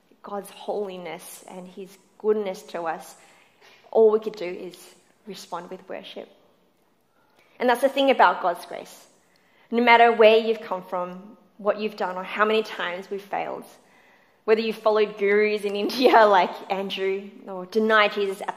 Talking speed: 160 wpm